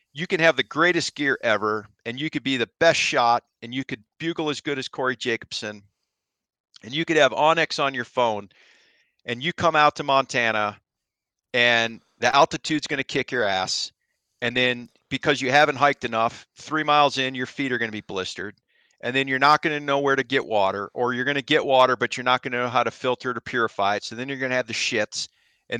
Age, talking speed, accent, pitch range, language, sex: 40-59, 235 wpm, American, 120-150 Hz, English, male